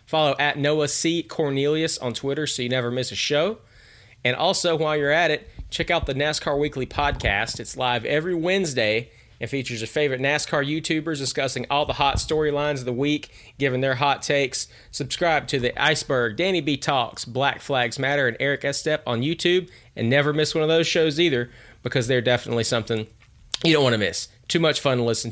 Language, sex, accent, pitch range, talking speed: English, male, American, 115-145 Hz, 200 wpm